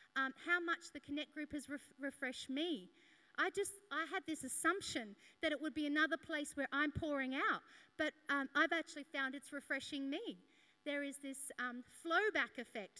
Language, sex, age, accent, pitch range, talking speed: English, female, 40-59, Australian, 250-310 Hz, 180 wpm